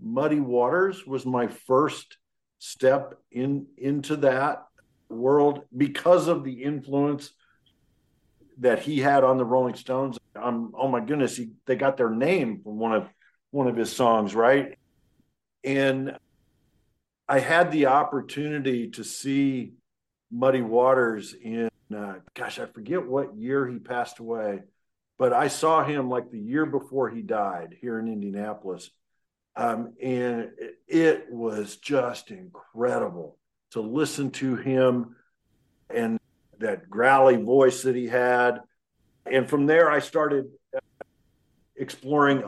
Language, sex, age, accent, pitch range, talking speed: English, male, 50-69, American, 125-145 Hz, 130 wpm